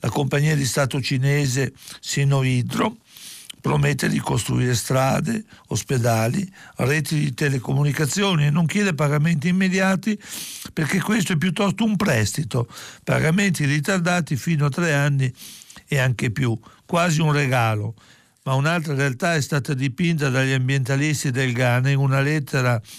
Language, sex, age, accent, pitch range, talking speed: Italian, male, 60-79, native, 130-165 Hz, 130 wpm